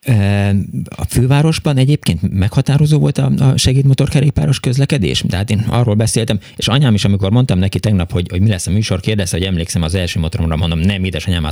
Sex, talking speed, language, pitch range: male, 175 wpm, Hungarian, 95-120 Hz